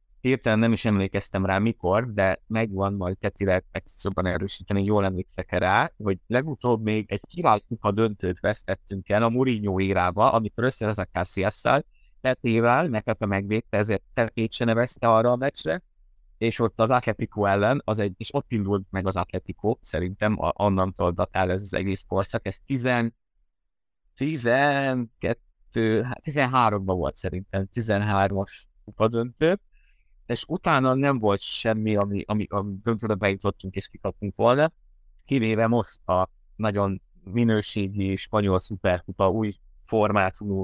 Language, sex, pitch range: Hungarian, male, 95-115 Hz